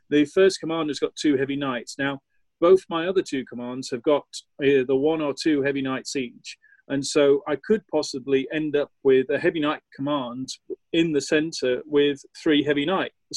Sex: male